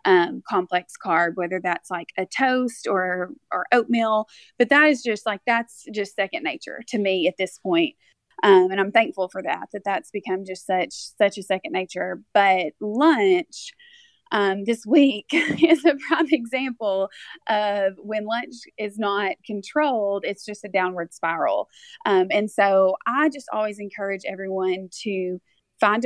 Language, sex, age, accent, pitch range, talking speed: English, female, 20-39, American, 195-260 Hz, 160 wpm